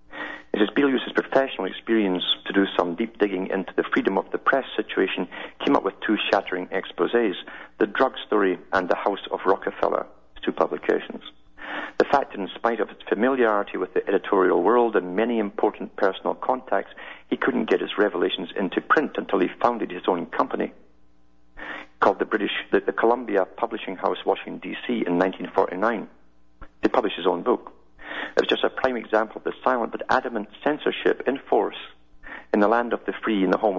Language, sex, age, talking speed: English, male, 50-69, 180 wpm